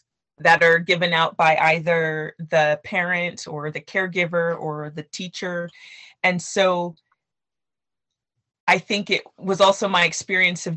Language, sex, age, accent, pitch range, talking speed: English, female, 30-49, American, 160-185 Hz, 135 wpm